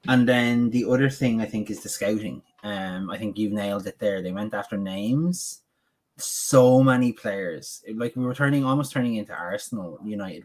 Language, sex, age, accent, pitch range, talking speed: English, male, 20-39, Irish, 100-120 Hz, 190 wpm